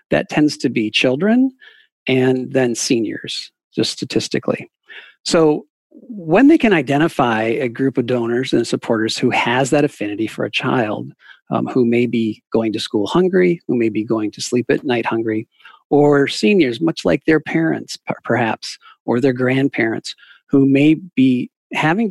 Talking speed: 160 wpm